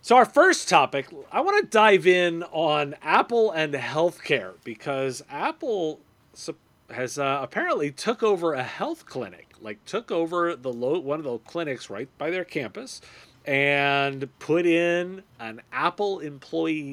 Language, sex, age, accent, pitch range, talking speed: English, male, 40-59, American, 130-170 Hz, 150 wpm